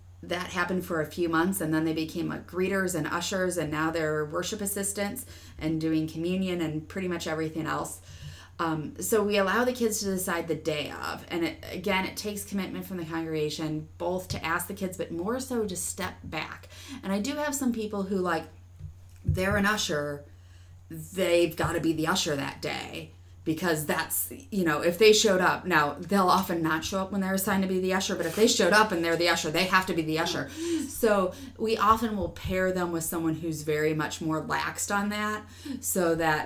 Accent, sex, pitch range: American, female, 155-190 Hz